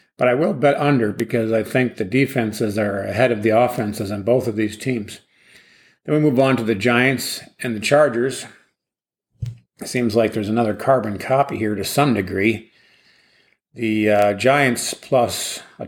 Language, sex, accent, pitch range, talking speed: English, male, American, 110-130 Hz, 170 wpm